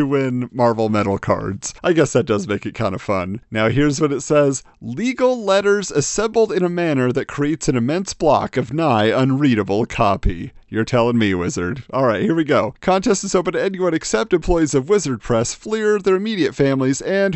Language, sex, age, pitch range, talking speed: English, male, 40-59, 115-180 Hz, 195 wpm